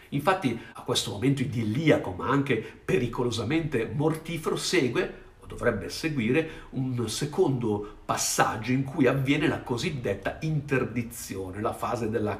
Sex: male